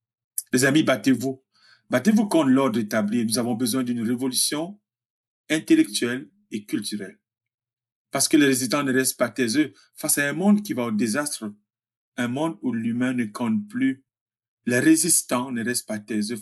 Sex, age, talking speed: male, 50-69, 160 wpm